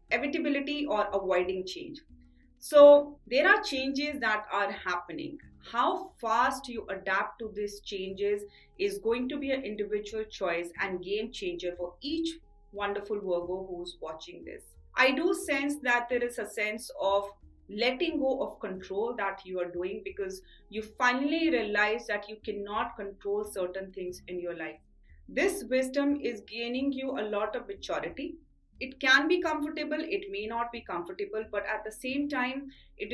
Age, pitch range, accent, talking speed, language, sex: 30-49, 200-275 Hz, Indian, 160 wpm, English, female